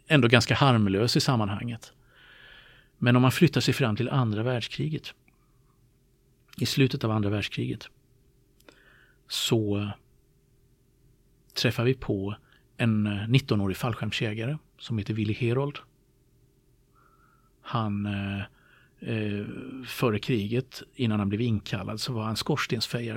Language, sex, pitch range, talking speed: Swedish, male, 110-130 Hz, 105 wpm